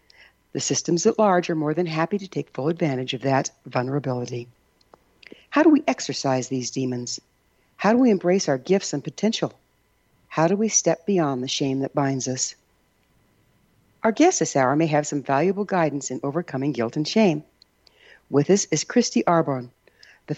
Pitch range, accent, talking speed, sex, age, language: 135-195 Hz, American, 175 wpm, female, 60-79, English